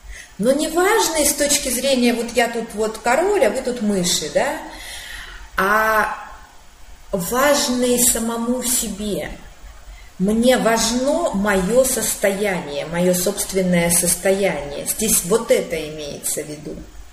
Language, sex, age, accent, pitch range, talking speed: Russian, female, 30-49, native, 185-255 Hz, 115 wpm